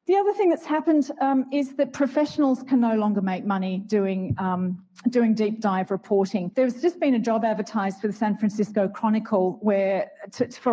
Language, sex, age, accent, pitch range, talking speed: English, female, 40-59, Australian, 205-265 Hz, 175 wpm